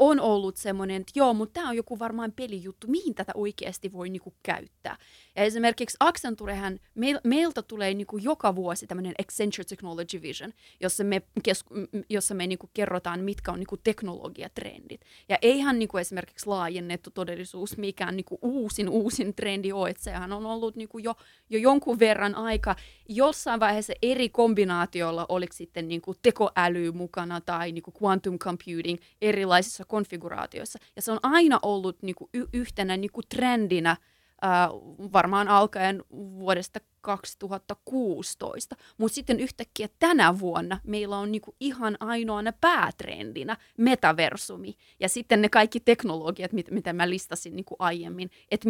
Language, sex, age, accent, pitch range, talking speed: Finnish, female, 30-49, native, 185-235 Hz, 140 wpm